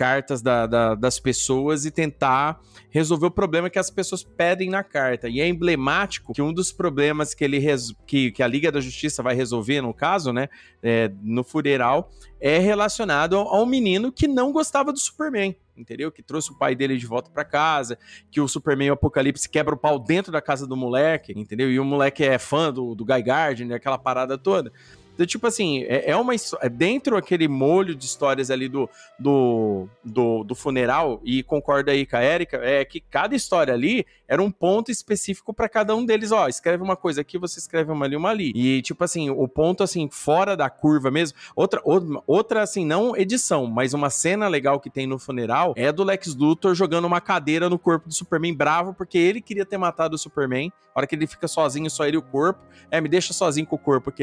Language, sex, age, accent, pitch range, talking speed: Portuguese, male, 30-49, Brazilian, 130-180 Hz, 215 wpm